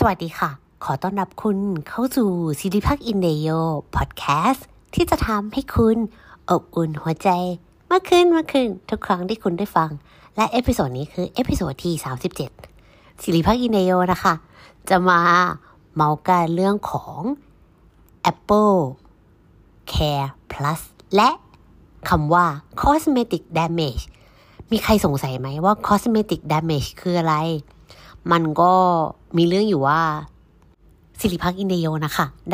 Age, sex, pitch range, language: 60-79, female, 150-195 Hz, Thai